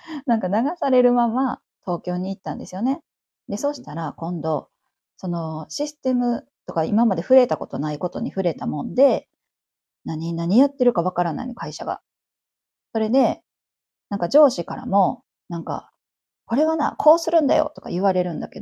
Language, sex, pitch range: Japanese, female, 180-270 Hz